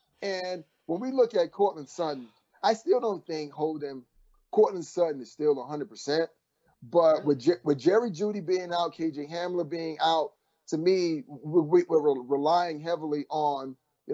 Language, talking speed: English, 155 wpm